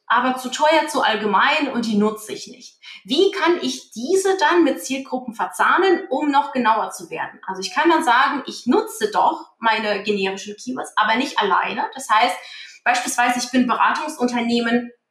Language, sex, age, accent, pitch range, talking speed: German, female, 30-49, German, 220-310 Hz, 170 wpm